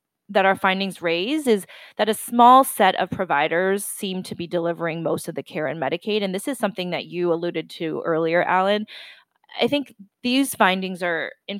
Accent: American